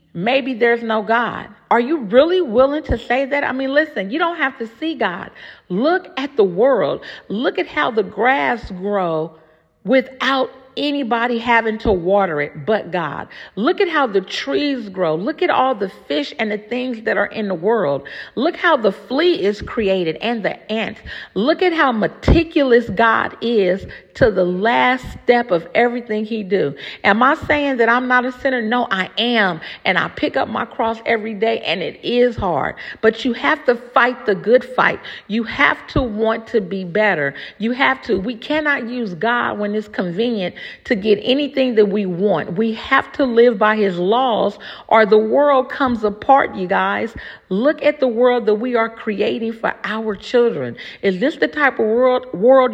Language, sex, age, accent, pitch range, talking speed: English, female, 50-69, American, 210-265 Hz, 190 wpm